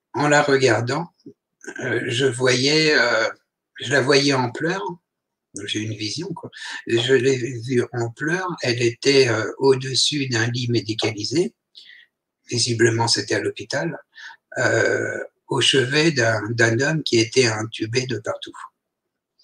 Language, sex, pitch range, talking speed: French, male, 120-150 Hz, 135 wpm